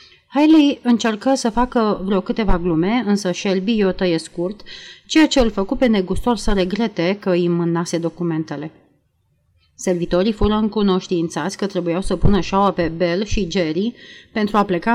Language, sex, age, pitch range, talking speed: Romanian, female, 30-49, 180-220 Hz, 155 wpm